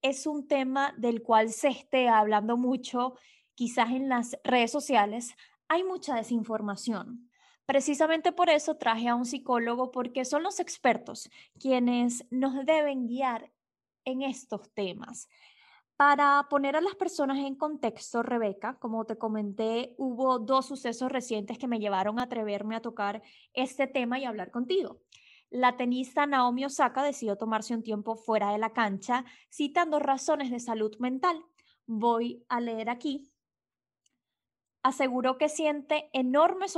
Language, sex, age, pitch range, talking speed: Spanish, female, 20-39, 230-285 Hz, 140 wpm